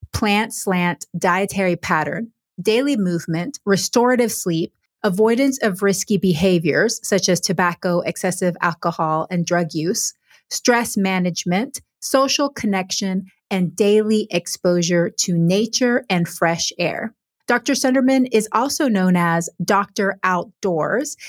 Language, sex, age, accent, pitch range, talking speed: English, female, 30-49, American, 180-230 Hz, 115 wpm